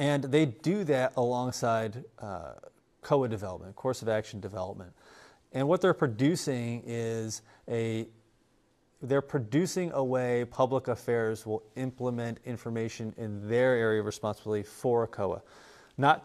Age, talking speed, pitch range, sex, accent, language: 30-49, 135 wpm, 110-130 Hz, male, American, English